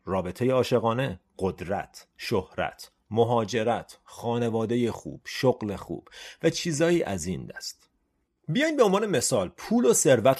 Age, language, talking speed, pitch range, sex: 40-59, Persian, 120 wpm, 100-145 Hz, male